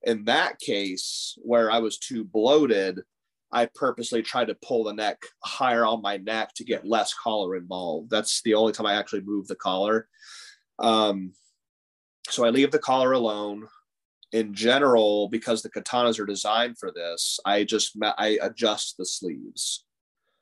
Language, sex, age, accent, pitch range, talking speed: English, male, 30-49, American, 105-125 Hz, 160 wpm